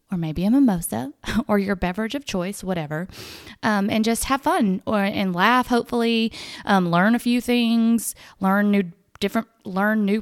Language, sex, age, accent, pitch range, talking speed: English, female, 20-39, American, 190-240 Hz, 170 wpm